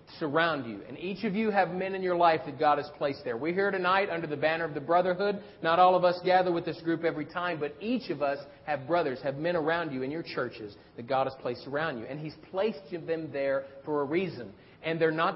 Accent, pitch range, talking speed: American, 165-245 Hz, 255 wpm